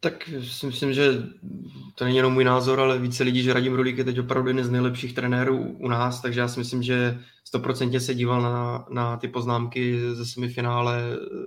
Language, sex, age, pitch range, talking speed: Czech, male, 20-39, 120-130 Hz, 200 wpm